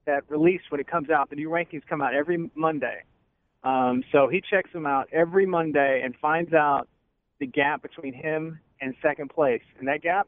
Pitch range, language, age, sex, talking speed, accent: 135-170 Hz, English, 40-59, male, 200 wpm, American